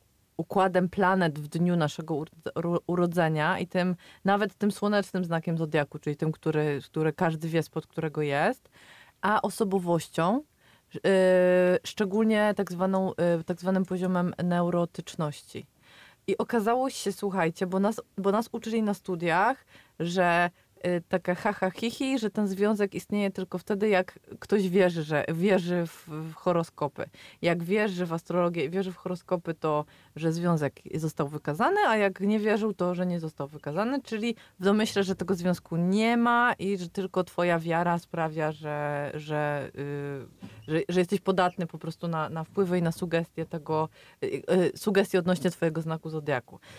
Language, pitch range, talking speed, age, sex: Polish, 165-200 Hz, 145 wpm, 20-39, female